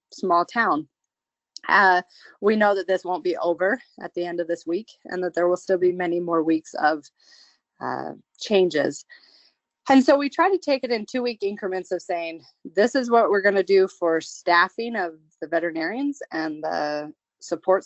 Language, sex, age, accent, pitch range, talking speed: English, female, 30-49, American, 165-205 Hz, 185 wpm